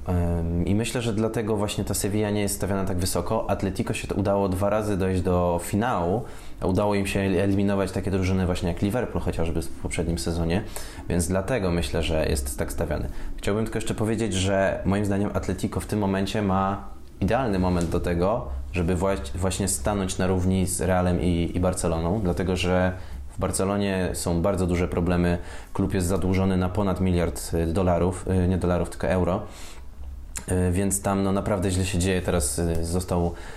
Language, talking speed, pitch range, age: Polish, 170 wpm, 85-100 Hz, 20-39